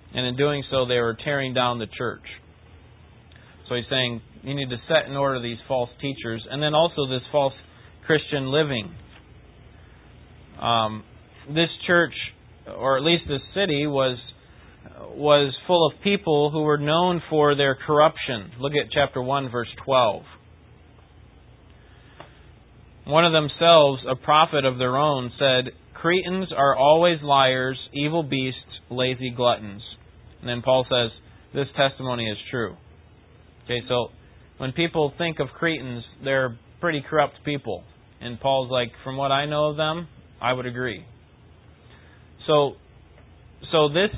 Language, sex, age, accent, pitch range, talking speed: English, male, 30-49, American, 120-150 Hz, 145 wpm